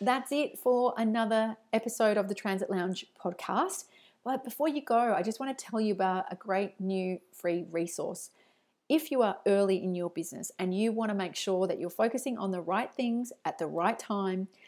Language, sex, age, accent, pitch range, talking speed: English, female, 40-59, Australian, 185-220 Hz, 205 wpm